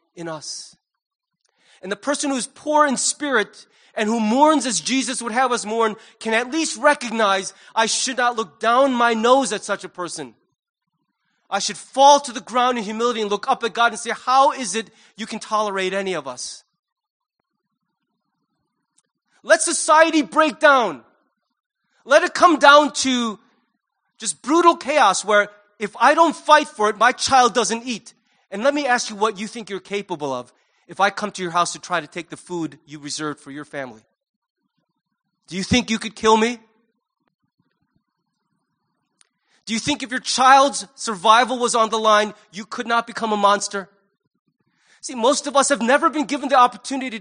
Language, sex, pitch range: English, male, 205-270 Hz